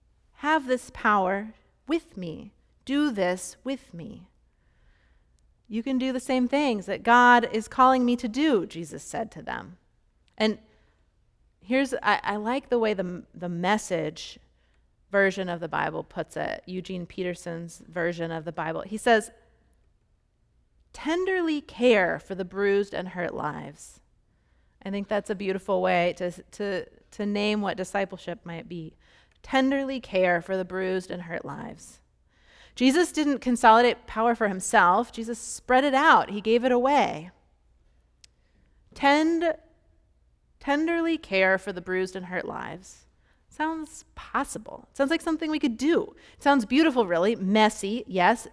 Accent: American